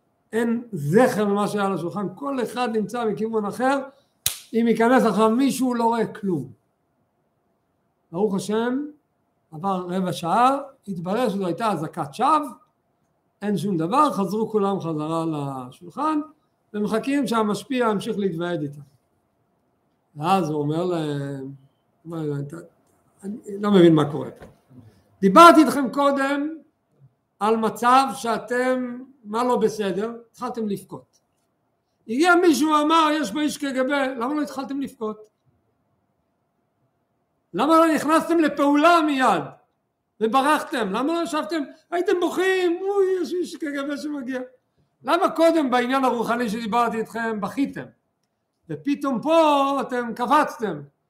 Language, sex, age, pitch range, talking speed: Hebrew, male, 60-79, 175-275 Hz, 115 wpm